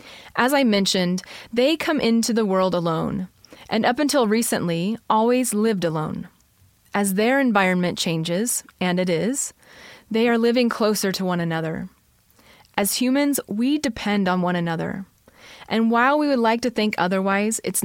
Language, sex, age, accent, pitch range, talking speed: English, female, 30-49, American, 185-235 Hz, 155 wpm